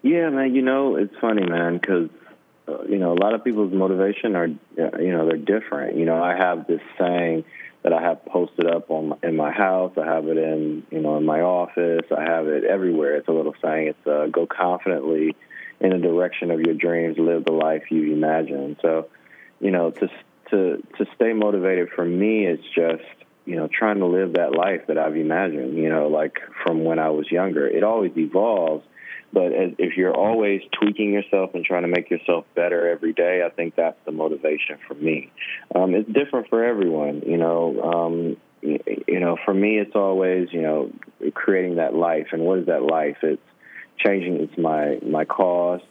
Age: 30-49